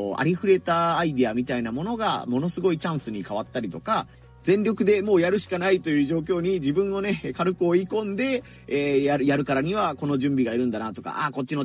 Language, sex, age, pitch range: Japanese, male, 30-49, 125-175 Hz